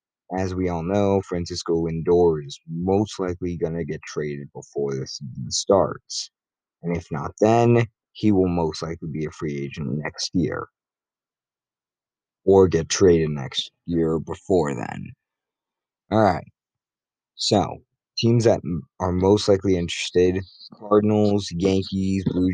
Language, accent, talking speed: English, American, 130 wpm